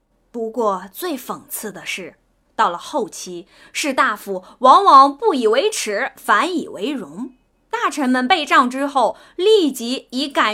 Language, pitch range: Chinese, 215-295 Hz